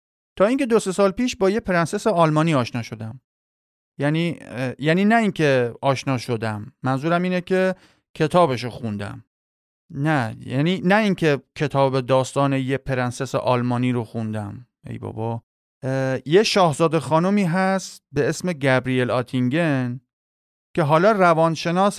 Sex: male